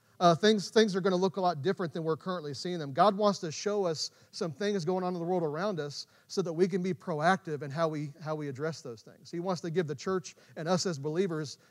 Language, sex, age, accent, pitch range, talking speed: English, male, 40-59, American, 150-185 Hz, 265 wpm